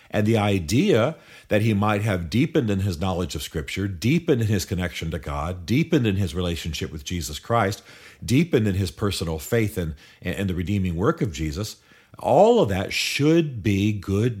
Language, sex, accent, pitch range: English, male, American, 90-115 Hz